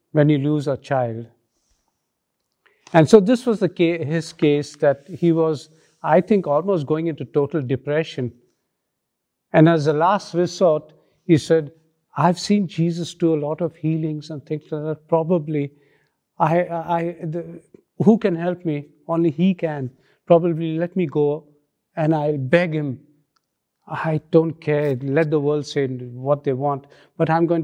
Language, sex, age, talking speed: English, male, 50-69, 155 wpm